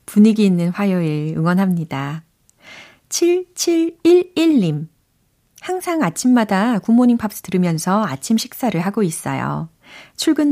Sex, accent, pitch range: female, native, 165-240 Hz